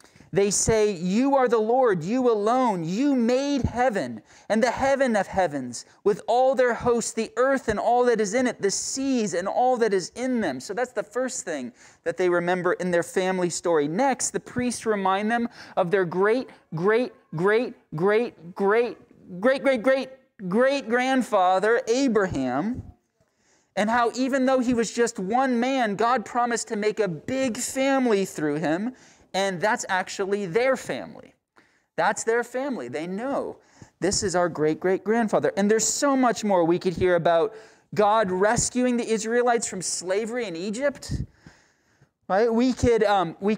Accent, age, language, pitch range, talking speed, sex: American, 30-49, English, 195-250 Hz, 165 wpm, male